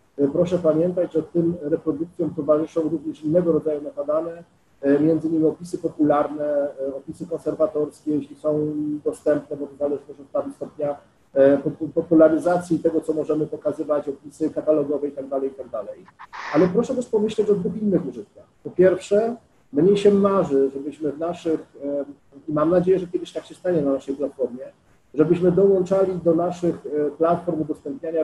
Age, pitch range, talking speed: 40-59, 150-180 Hz, 135 wpm